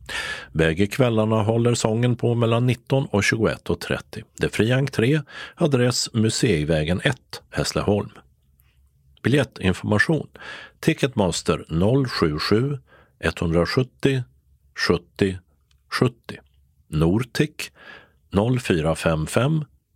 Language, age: Swedish, 50-69